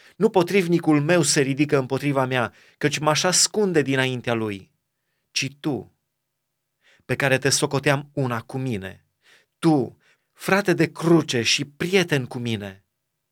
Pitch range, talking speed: 120-150 Hz, 135 wpm